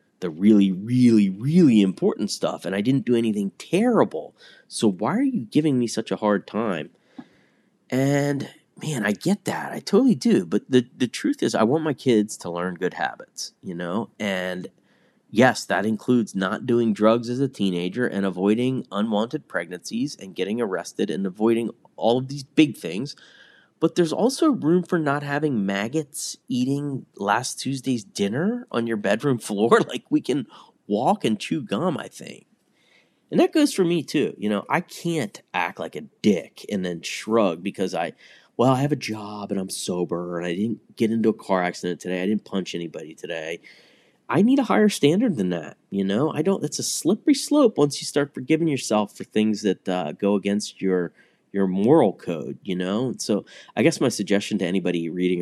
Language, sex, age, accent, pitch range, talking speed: English, male, 30-49, American, 95-145 Hz, 190 wpm